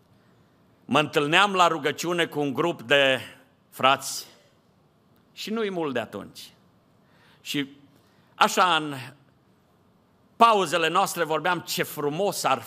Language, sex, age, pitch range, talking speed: Romanian, male, 50-69, 135-175 Hz, 110 wpm